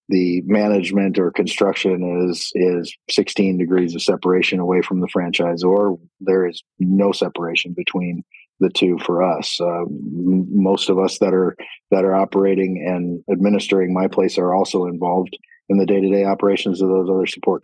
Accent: American